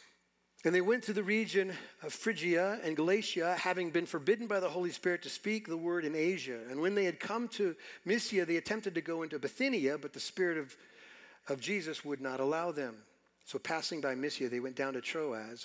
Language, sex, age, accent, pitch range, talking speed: English, male, 50-69, American, 155-210 Hz, 210 wpm